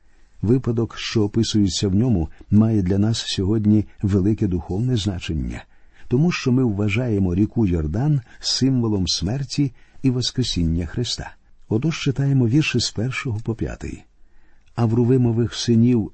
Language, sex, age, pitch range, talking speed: Ukrainian, male, 50-69, 95-125 Hz, 125 wpm